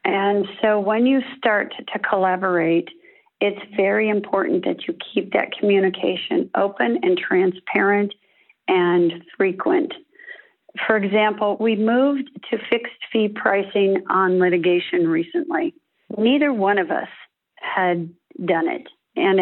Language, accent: English, American